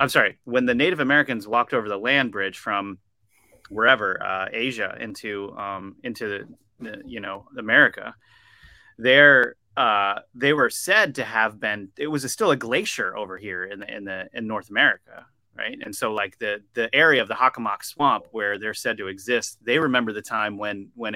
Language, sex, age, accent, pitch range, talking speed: English, male, 30-49, American, 105-125 Hz, 195 wpm